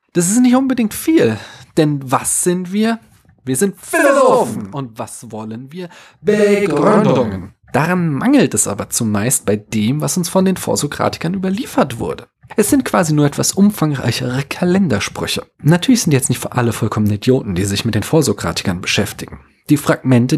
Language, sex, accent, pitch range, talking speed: German, male, German, 120-190 Hz, 160 wpm